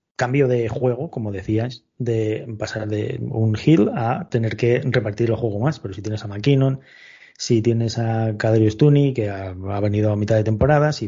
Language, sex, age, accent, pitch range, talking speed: Spanish, male, 20-39, Spanish, 110-125 Hz, 190 wpm